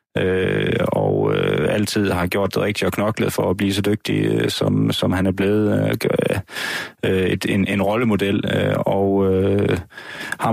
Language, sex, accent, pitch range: Danish, male, native, 95-110 Hz